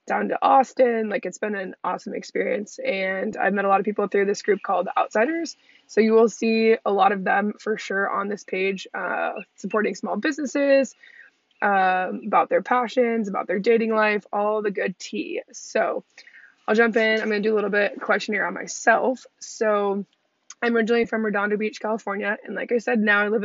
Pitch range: 200-240 Hz